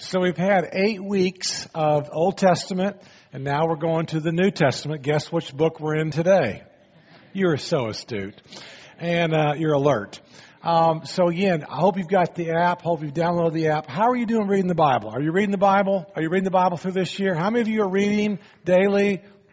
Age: 50-69